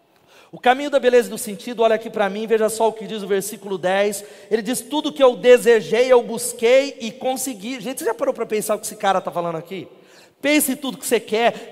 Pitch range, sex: 210-260 Hz, male